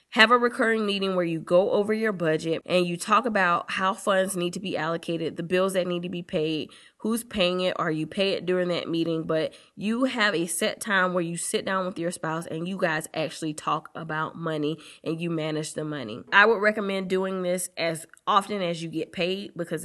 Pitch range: 165-195 Hz